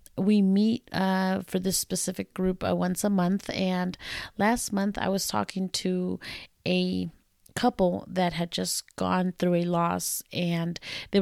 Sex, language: female, English